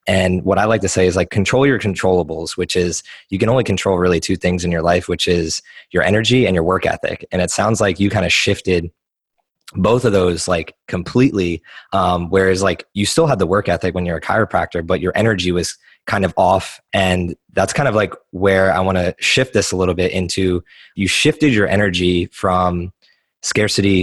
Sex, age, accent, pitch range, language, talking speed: male, 20-39, American, 90-100 Hz, English, 210 wpm